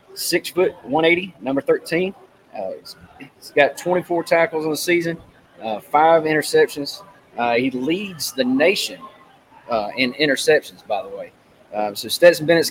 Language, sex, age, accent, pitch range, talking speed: English, male, 20-39, American, 130-170 Hz, 145 wpm